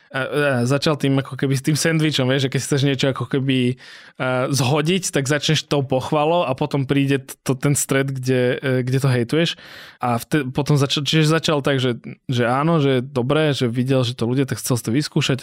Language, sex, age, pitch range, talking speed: Slovak, male, 20-39, 130-155 Hz, 220 wpm